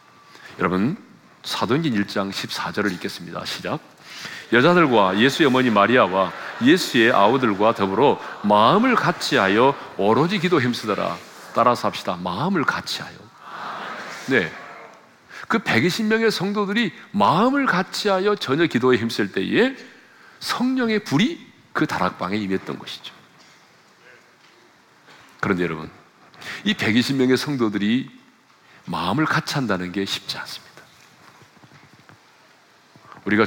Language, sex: Korean, male